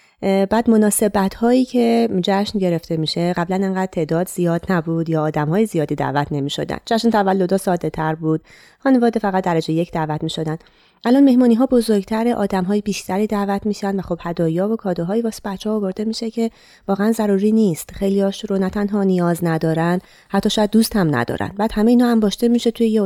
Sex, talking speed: female, 195 wpm